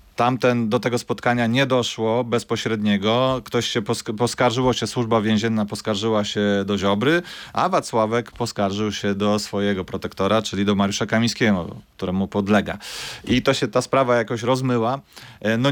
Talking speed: 140 wpm